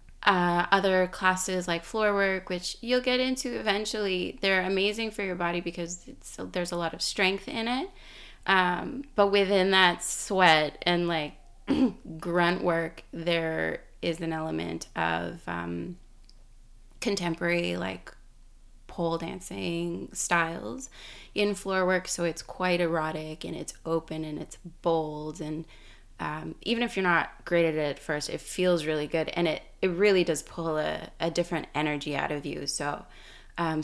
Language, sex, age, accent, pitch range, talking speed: English, female, 20-39, American, 155-185 Hz, 155 wpm